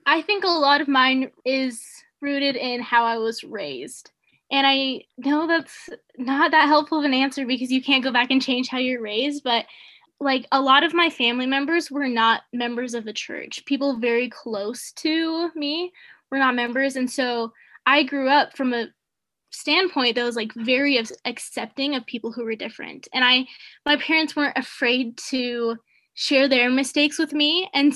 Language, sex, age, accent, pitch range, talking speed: English, female, 10-29, American, 250-310 Hz, 185 wpm